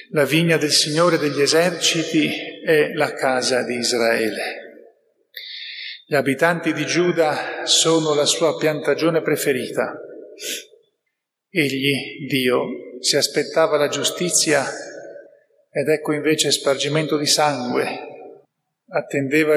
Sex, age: male, 40-59